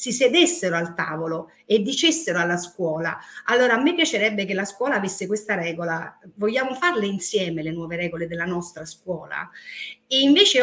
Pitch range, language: 175-240 Hz, Italian